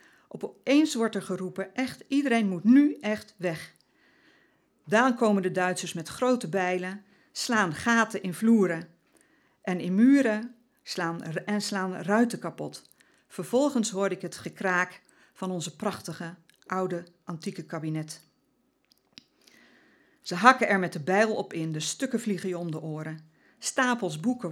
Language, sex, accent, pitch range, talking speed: Dutch, female, Dutch, 170-220 Hz, 140 wpm